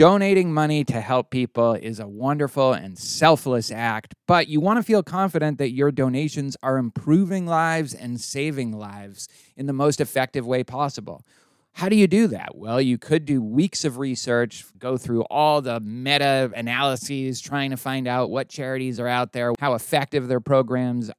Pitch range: 125-160 Hz